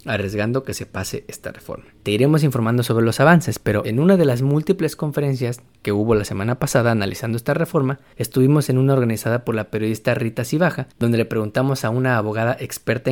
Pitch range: 110-135 Hz